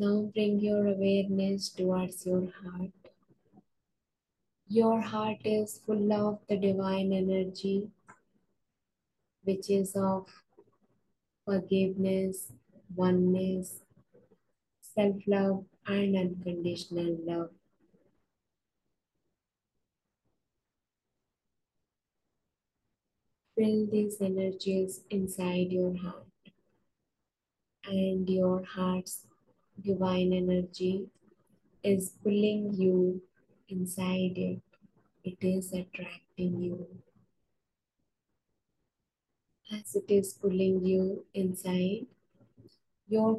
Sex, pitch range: female, 185-200 Hz